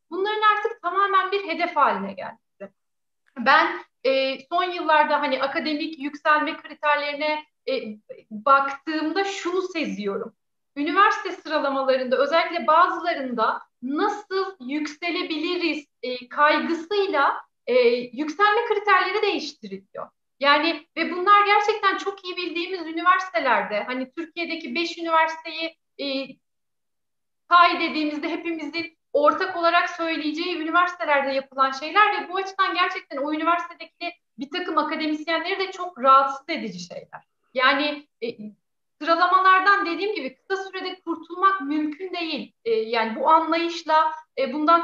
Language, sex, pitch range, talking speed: Turkish, female, 290-365 Hz, 110 wpm